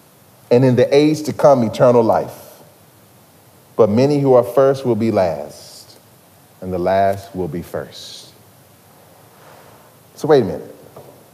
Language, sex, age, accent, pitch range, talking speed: English, male, 40-59, American, 125-190 Hz, 140 wpm